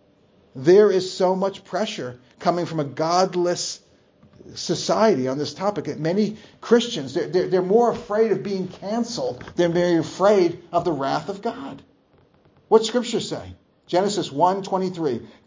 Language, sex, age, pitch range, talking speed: English, male, 40-59, 155-205 Hz, 140 wpm